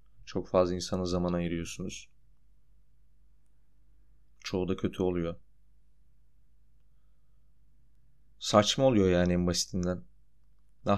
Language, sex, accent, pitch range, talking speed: Turkish, male, native, 90-115 Hz, 80 wpm